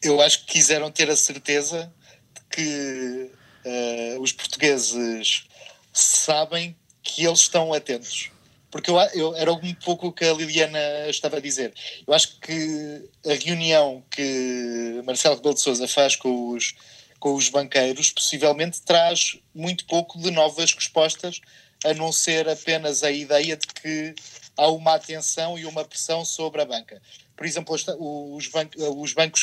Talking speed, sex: 145 wpm, male